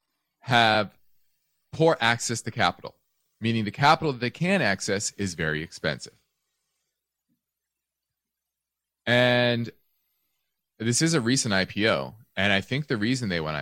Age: 30-49